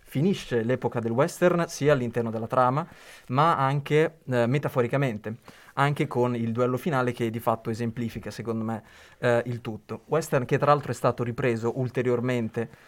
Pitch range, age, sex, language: 115-140 Hz, 20-39, male, Italian